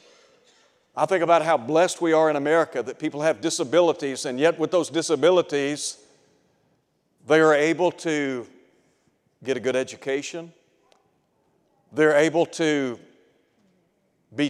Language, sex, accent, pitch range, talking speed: English, male, American, 145-170 Hz, 125 wpm